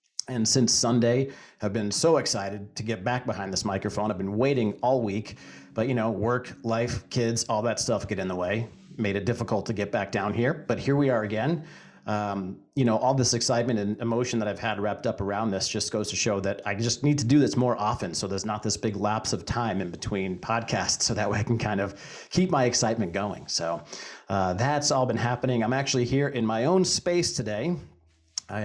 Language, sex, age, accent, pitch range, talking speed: English, male, 40-59, American, 105-125 Hz, 230 wpm